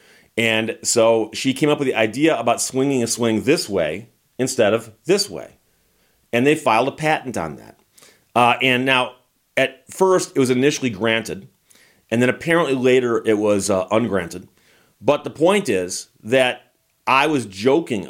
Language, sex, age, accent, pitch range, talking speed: English, male, 40-59, American, 105-135 Hz, 165 wpm